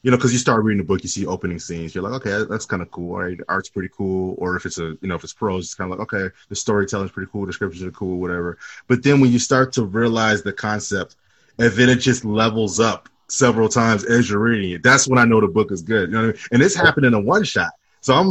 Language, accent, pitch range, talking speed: English, American, 95-130 Hz, 295 wpm